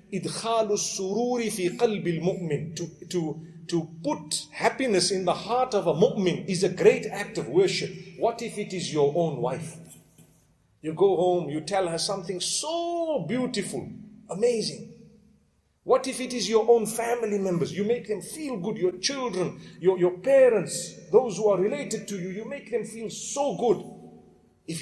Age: 50-69